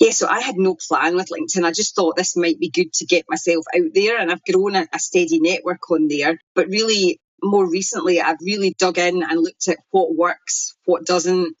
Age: 30-49